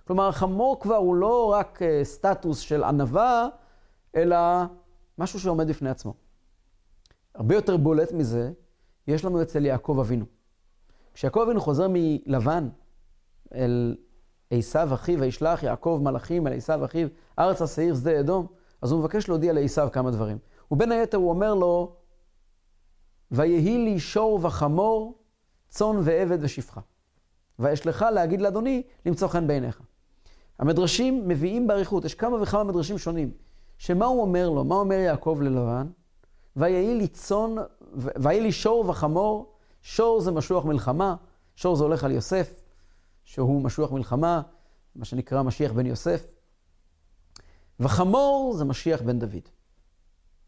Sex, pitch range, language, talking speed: male, 115-185 Hz, Hebrew, 130 wpm